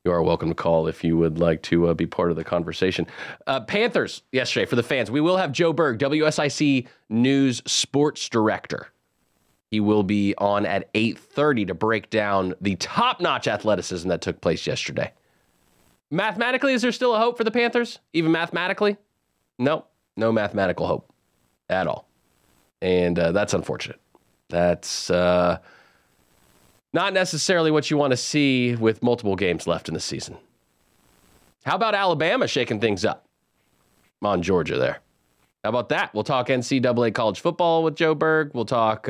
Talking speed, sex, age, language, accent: 165 wpm, male, 30-49, English, American